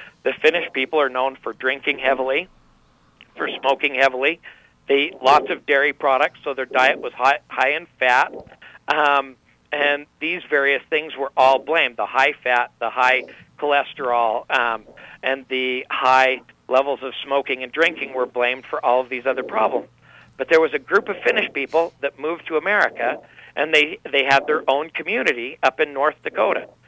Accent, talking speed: American, 175 wpm